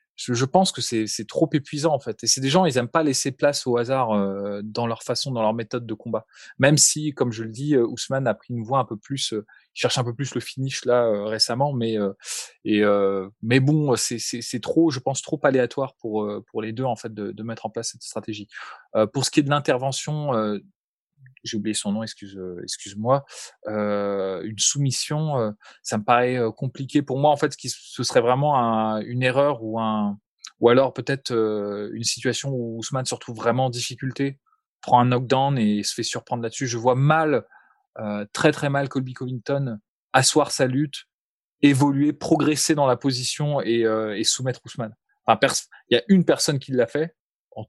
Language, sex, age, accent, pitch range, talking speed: French, male, 20-39, French, 110-140 Hz, 215 wpm